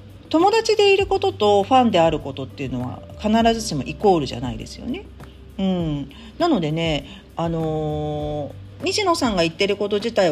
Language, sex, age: Japanese, female, 40-59